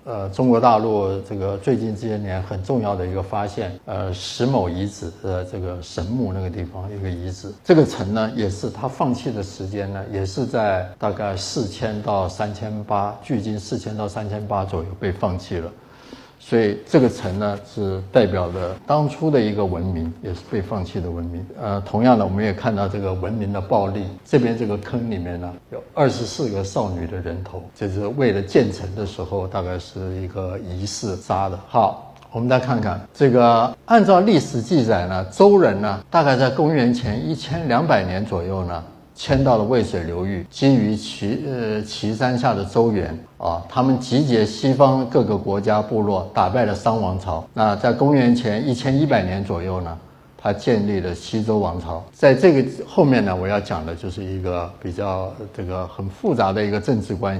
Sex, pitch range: male, 95-120 Hz